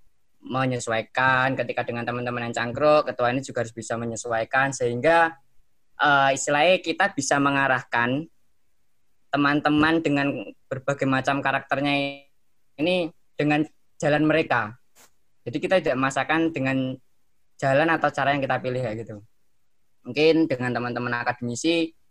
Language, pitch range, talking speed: Indonesian, 120-140 Hz, 120 wpm